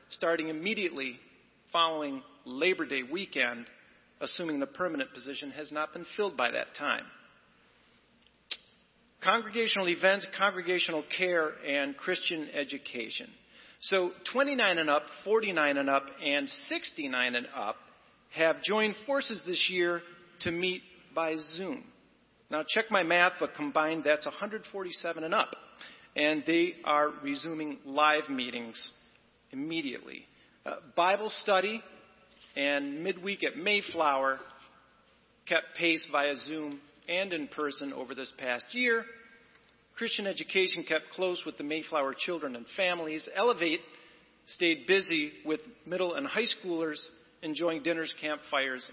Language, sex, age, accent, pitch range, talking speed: English, male, 50-69, American, 145-195 Hz, 125 wpm